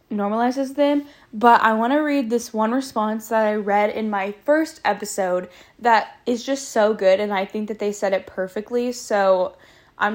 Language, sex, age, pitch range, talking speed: English, female, 10-29, 205-235 Hz, 190 wpm